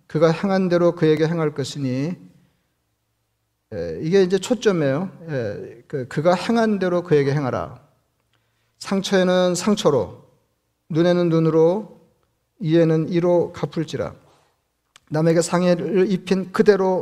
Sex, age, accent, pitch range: male, 40-59, native, 150-180 Hz